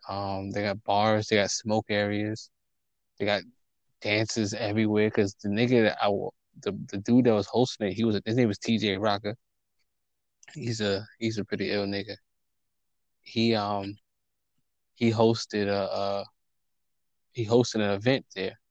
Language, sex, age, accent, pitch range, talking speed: English, male, 20-39, American, 100-115 Hz, 165 wpm